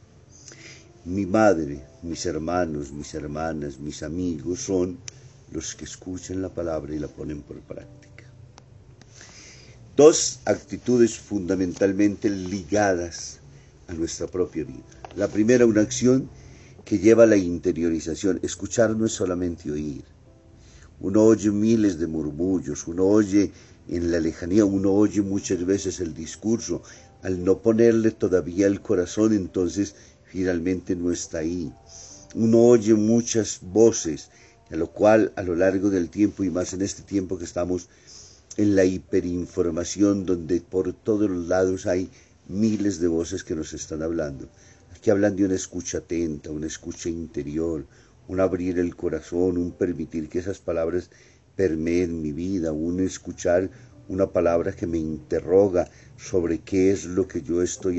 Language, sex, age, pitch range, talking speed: Spanish, male, 50-69, 85-105 Hz, 145 wpm